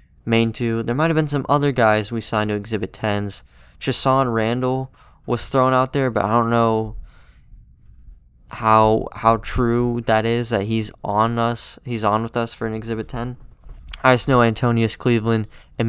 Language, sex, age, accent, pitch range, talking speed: English, male, 20-39, American, 105-125 Hz, 180 wpm